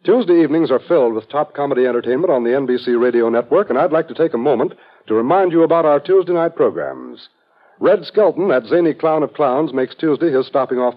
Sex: male